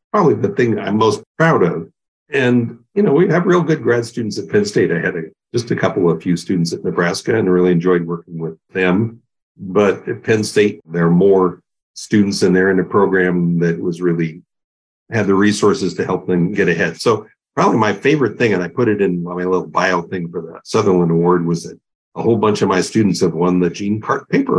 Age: 50-69